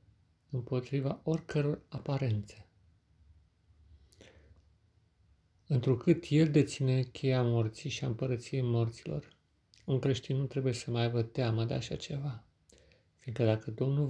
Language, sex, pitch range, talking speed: Romanian, male, 115-135 Hz, 105 wpm